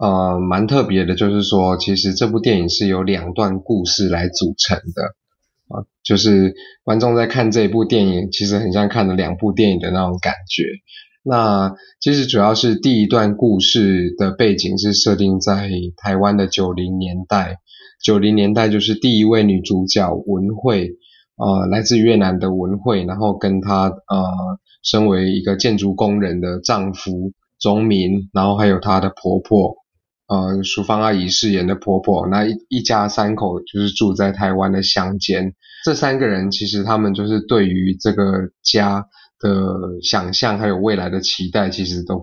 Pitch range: 95-105 Hz